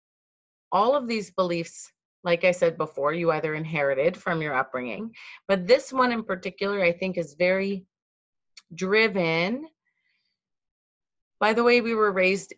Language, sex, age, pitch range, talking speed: English, female, 30-49, 160-195 Hz, 145 wpm